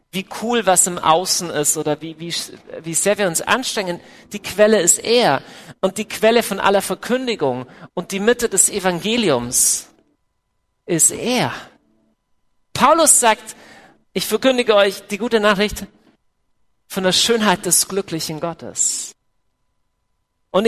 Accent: German